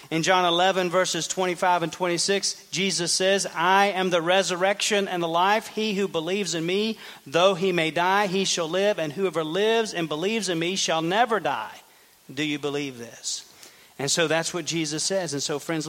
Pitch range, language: 150-185 Hz, English